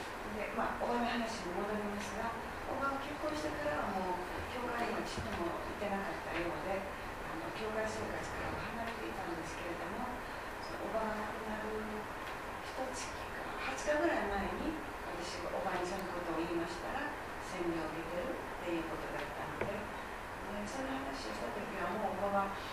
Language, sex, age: Japanese, female, 40-59